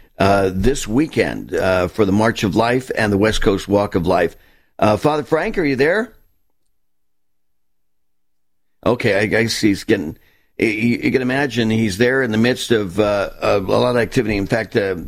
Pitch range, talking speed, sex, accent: 95-110 Hz, 175 wpm, male, American